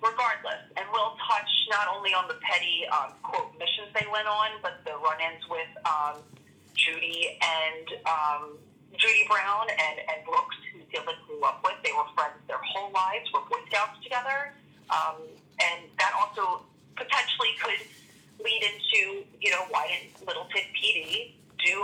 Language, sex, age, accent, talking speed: English, female, 30-49, American, 160 wpm